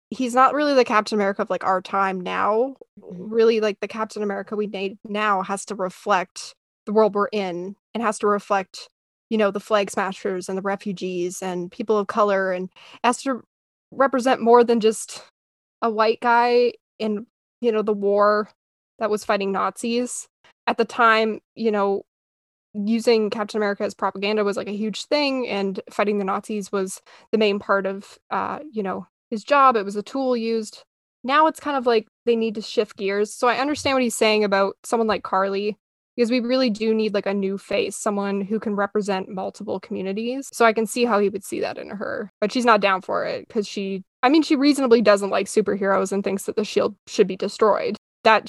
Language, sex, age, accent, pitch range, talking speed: English, female, 10-29, American, 200-235 Hz, 205 wpm